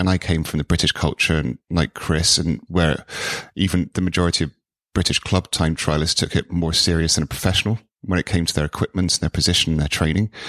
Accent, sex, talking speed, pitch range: British, male, 225 wpm, 85-100 Hz